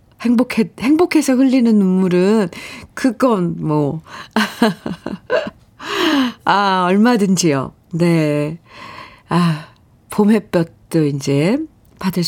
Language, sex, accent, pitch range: Korean, female, native, 160-250 Hz